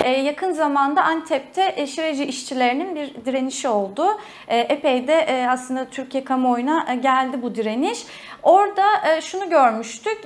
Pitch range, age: 255-330 Hz, 30-49